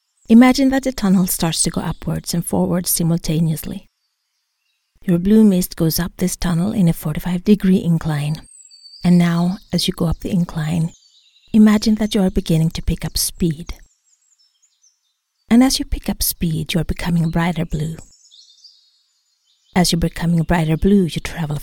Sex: female